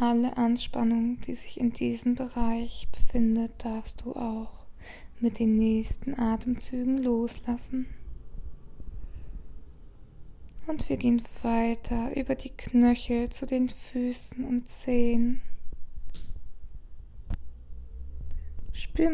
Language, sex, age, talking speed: English, female, 20-39, 90 wpm